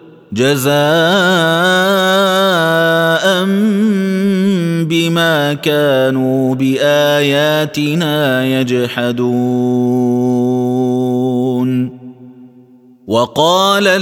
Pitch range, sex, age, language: 130-165 Hz, male, 30-49, Arabic